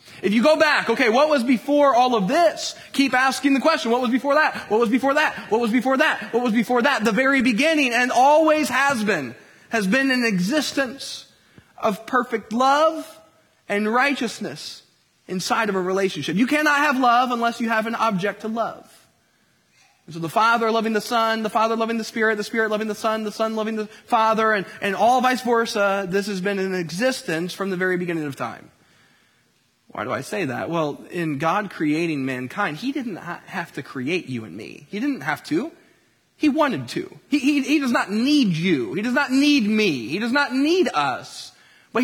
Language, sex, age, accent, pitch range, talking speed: English, male, 20-39, American, 200-275 Hz, 205 wpm